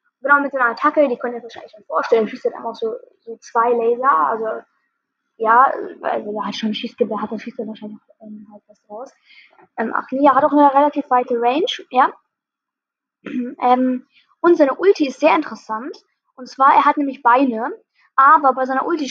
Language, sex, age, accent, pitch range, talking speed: German, female, 10-29, German, 240-290 Hz, 210 wpm